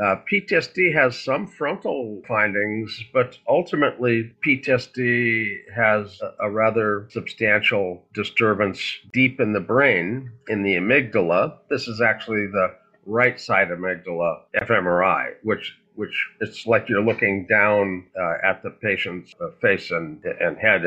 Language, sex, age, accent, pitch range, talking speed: English, male, 50-69, American, 95-120 Hz, 130 wpm